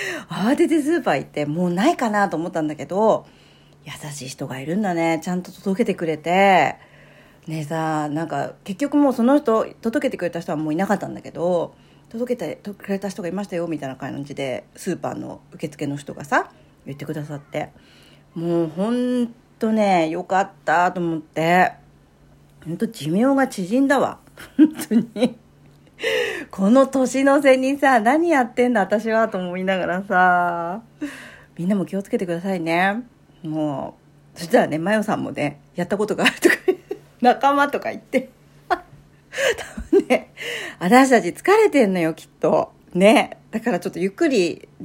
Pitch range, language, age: 165-250 Hz, Japanese, 40-59